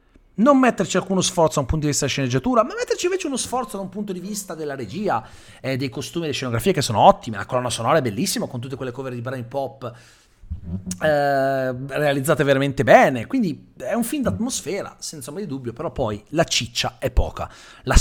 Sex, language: male, Italian